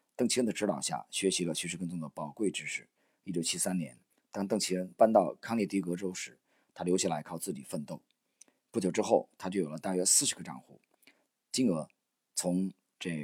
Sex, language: male, Chinese